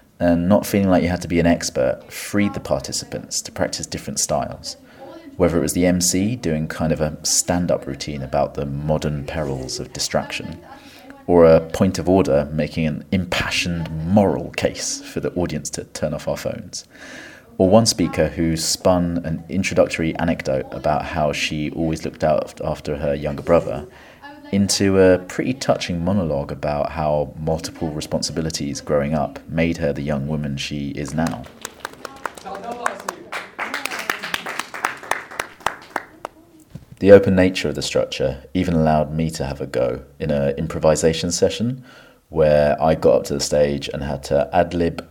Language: English